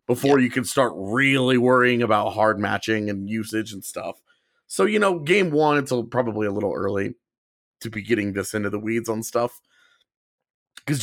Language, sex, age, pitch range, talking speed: English, male, 30-49, 105-130 Hz, 185 wpm